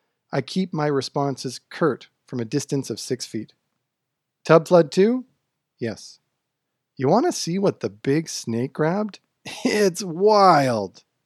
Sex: male